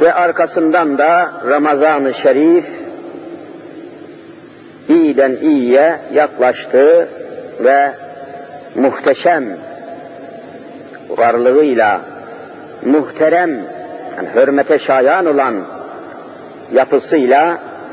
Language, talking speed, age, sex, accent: Turkish, 55 wpm, 50-69, male, native